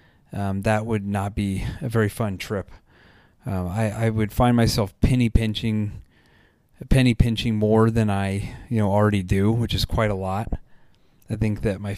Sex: male